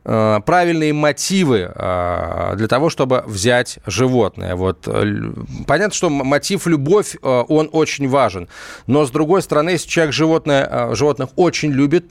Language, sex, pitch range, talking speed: Russian, male, 130-170 Hz, 125 wpm